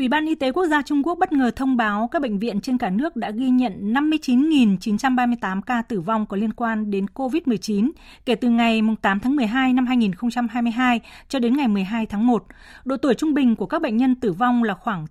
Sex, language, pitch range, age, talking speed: female, Vietnamese, 205-260 Hz, 20-39, 225 wpm